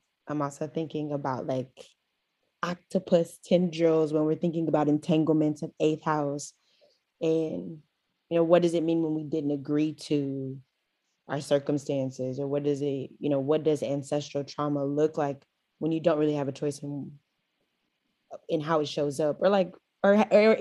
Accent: American